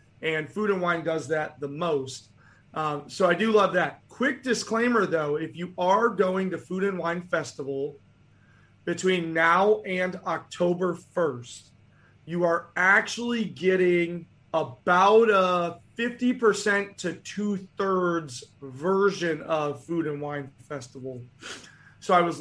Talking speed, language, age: 125 wpm, English, 30-49